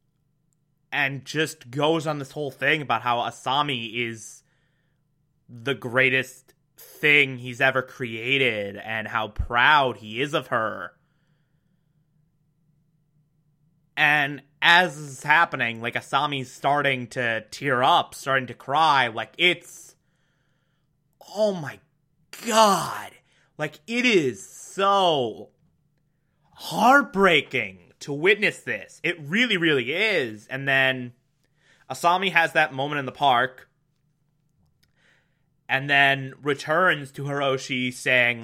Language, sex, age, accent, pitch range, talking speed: English, male, 20-39, American, 125-155 Hz, 110 wpm